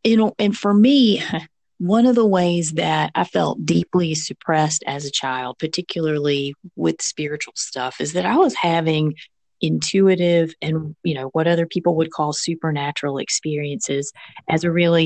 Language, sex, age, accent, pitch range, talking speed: English, female, 40-59, American, 150-175 Hz, 160 wpm